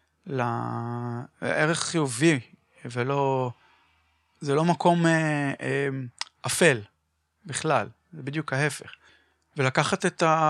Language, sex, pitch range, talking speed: Hebrew, male, 135-175 Hz, 90 wpm